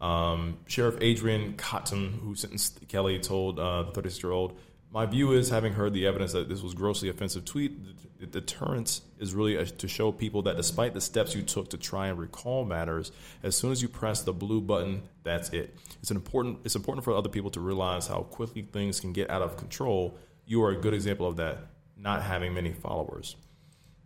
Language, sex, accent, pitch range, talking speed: English, male, American, 90-105 Hz, 205 wpm